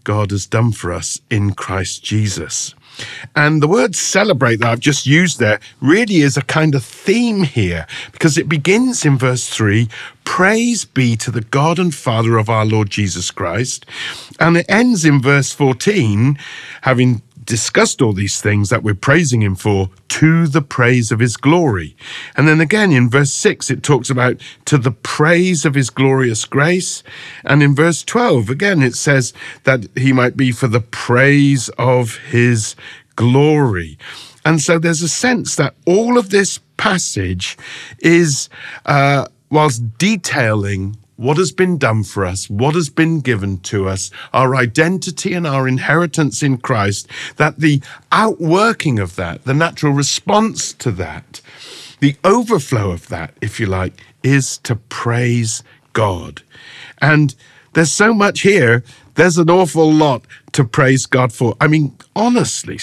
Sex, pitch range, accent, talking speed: male, 115-160 Hz, British, 160 wpm